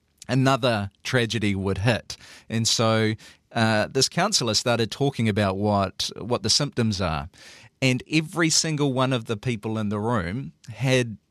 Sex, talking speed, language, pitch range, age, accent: male, 150 wpm, English, 105-135 Hz, 40-59, Australian